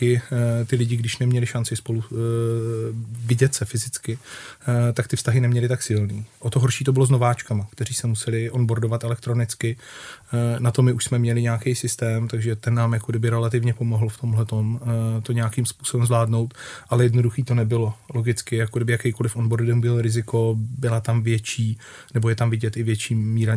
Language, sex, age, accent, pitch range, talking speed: Czech, male, 30-49, native, 110-120 Hz, 190 wpm